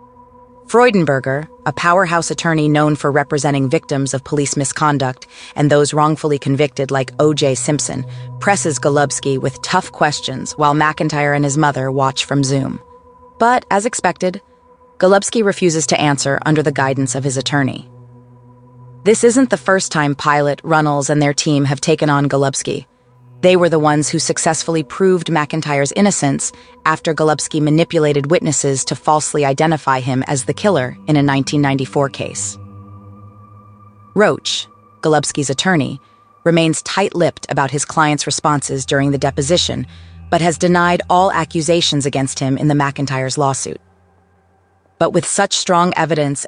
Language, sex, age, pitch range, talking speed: English, female, 30-49, 135-170 Hz, 140 wpm